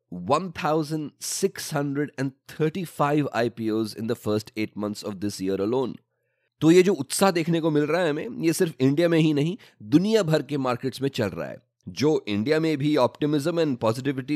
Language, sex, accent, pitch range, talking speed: English, male, Indian, 115-160 Hz, 135 wpm